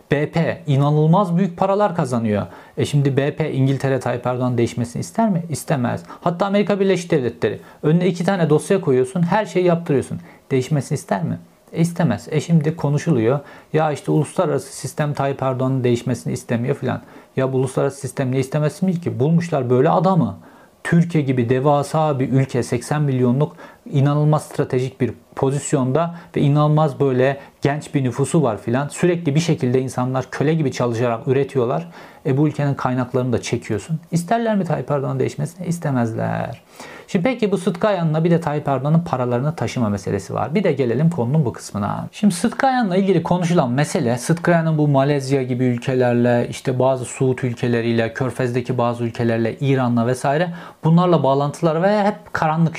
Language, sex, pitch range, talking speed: Turkish, male, 125-165 Hz, 150 wpm